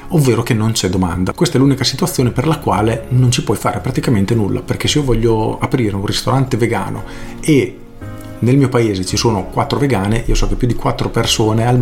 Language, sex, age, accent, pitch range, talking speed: Italian, male, 40-59, native, 105-130 Hz, 215 wpm